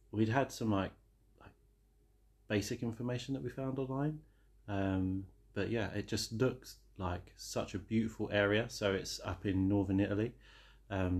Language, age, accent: English, 30-49, British